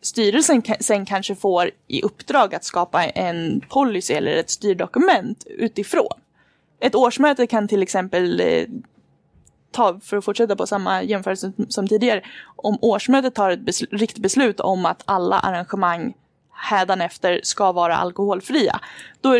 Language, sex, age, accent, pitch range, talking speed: Swedish, female, 20-39, native, 185-245 Hz, 140 wpm